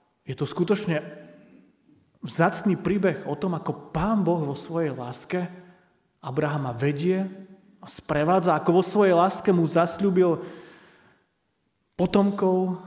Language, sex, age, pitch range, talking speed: Slovak, male, 30-49, 140-175 Hz, 110 wpm